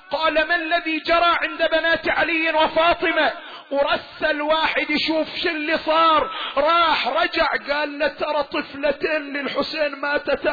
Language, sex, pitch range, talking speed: Arabic, male, 290-340 Hz, 120 wpm